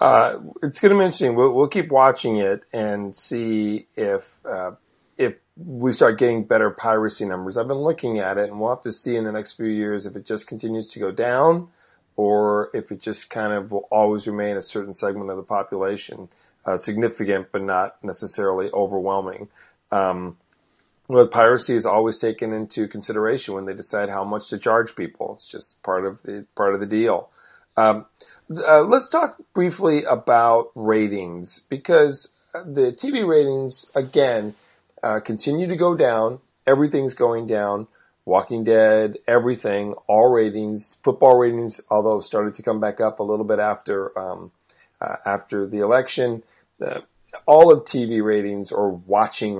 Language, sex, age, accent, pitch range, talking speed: English, male, 40-59, American, 100-120 Hz, 170 wpm